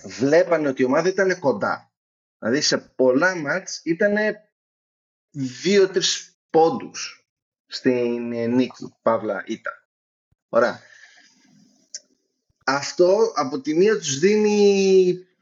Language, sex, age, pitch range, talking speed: Greek, male, 30-49, 130-180 Hz, 95 wpm